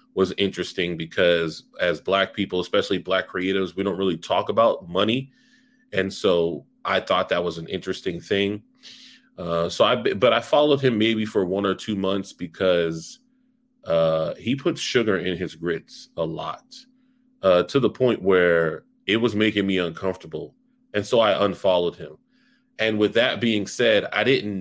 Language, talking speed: English, 170 wpm